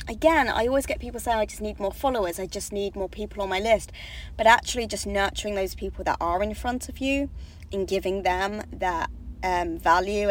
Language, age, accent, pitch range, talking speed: English, 20-39, British, 175-220 Hz, 215 wpm